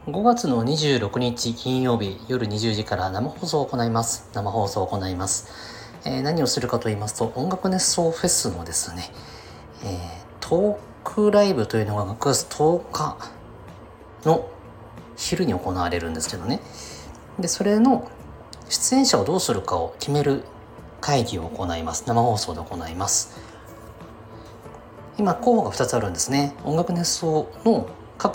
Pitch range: 105-150 Hz